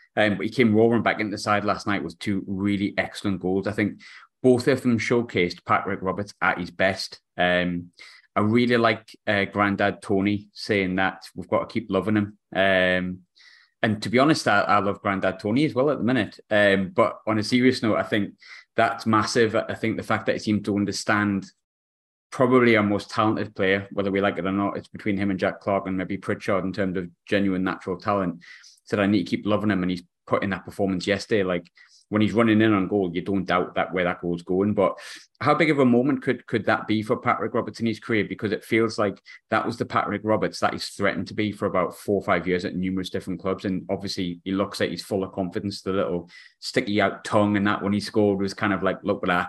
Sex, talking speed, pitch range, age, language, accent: male, 240 wpm, 95-105 Hz, 20-39, English, British